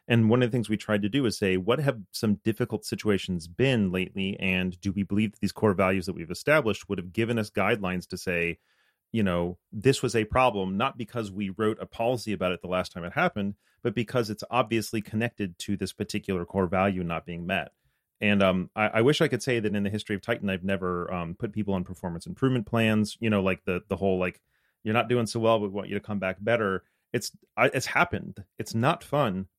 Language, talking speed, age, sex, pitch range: English, 235 wpm, 30-49, male, 95-120 Hz